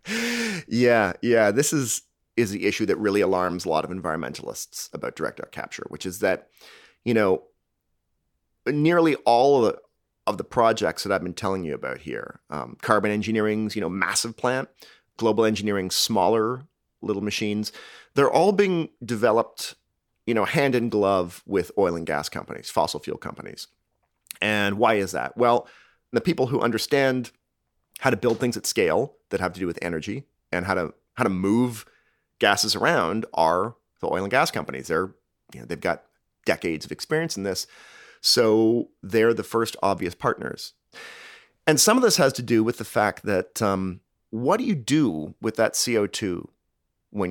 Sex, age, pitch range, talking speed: male, 30-49, 95-125 Hz, 175 wpm